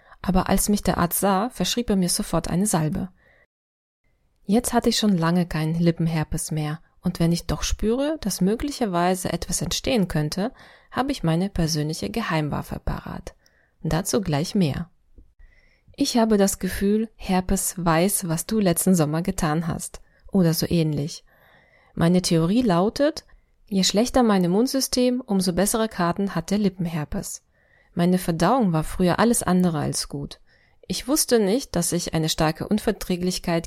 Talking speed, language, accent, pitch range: 150 wpm, German, German, 165-210 Hz